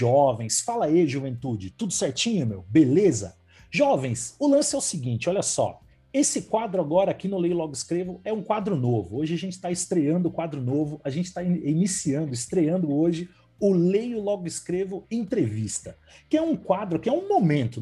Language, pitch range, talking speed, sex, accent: Portuguese, 145-205 Hz, 185 wpm, male, Brazilian